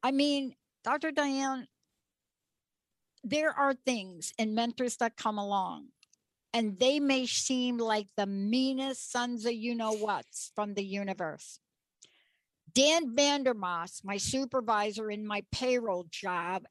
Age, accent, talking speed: 60-79, American, 120 wpm